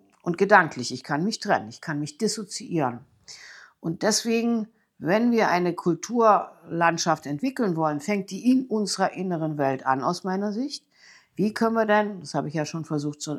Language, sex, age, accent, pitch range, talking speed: German, female, 60-79, German, 155-210 Hz, 175 wpm